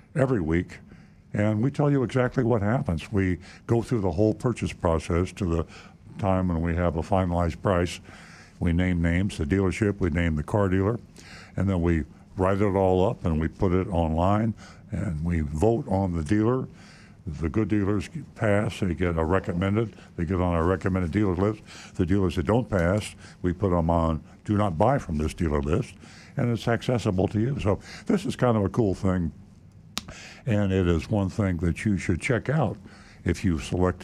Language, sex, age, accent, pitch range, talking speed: English, male, 60-79, American, 85-105 Hz, 195 wpm